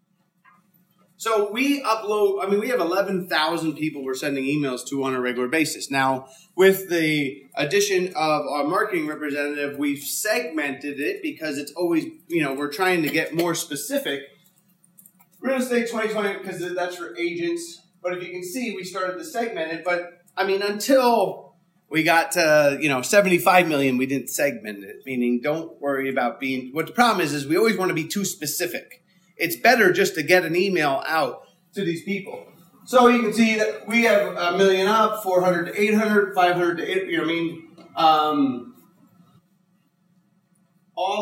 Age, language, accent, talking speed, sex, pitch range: 30-49, English, American, 180 wpm, male, 160-205 Hz